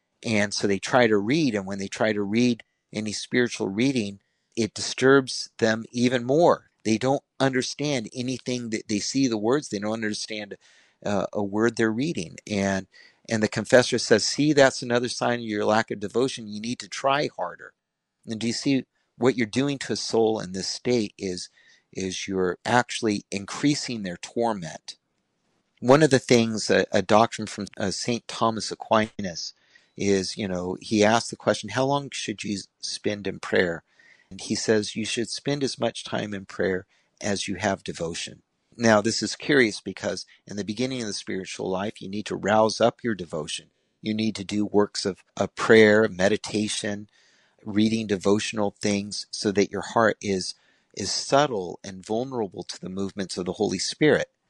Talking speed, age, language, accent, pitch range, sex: 180 wpm, 50-69, English, American, 100-120 Hz, male